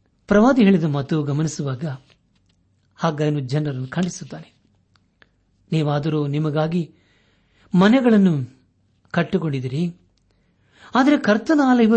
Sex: male